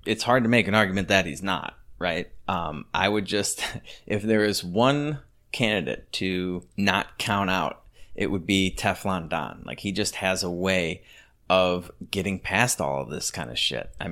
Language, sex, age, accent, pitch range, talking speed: English, male, 30-49, American, 90-105 Hz, 185 wpm